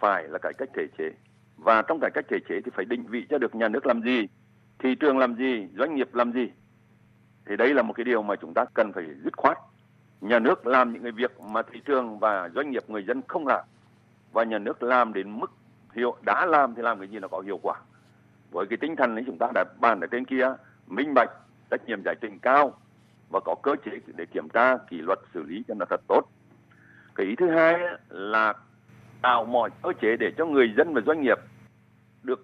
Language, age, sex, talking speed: Vietnamese, 60-79, male, 235 wpm